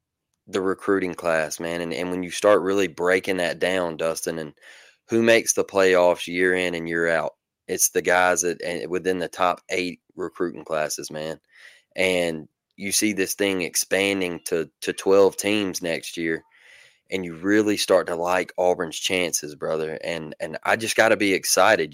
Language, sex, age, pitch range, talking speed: English, male, 20-39, 90-100 Hz, 180 wpm